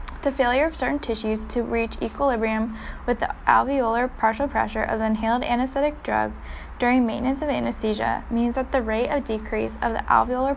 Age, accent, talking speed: 10-29, American, 175 wpm